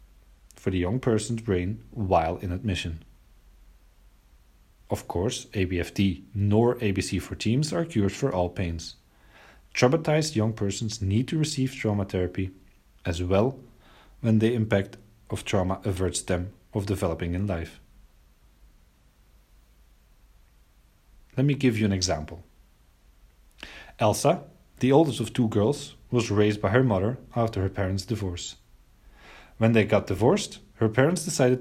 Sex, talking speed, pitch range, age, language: male, 130 wpm, 90-120 Hz, 30-49, Dutch